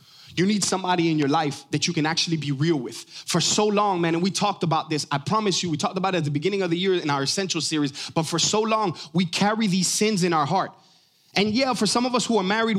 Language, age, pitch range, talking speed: English, 20-39, 160-210 Hz, 275 wpm